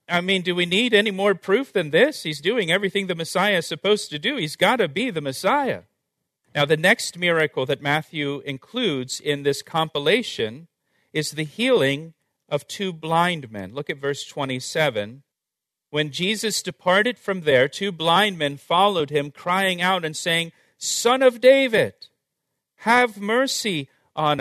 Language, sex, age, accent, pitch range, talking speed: English, male, 40-59, American, 150-195 Hz, 160 wpm